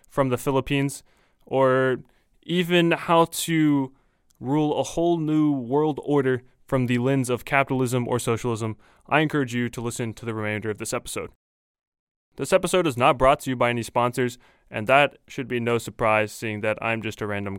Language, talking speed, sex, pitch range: English, 180 wpm, male, 115-140 Hz